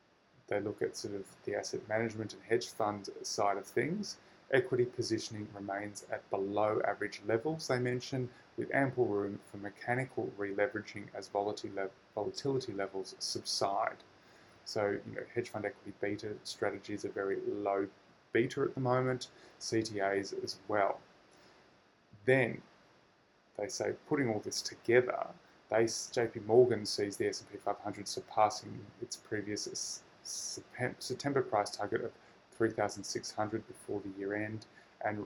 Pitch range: 100-125 Hz